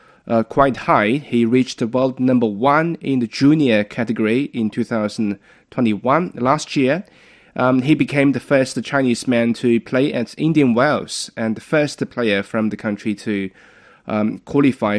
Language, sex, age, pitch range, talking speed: English, male, 20-39, 110-140 Hz, 150 wpm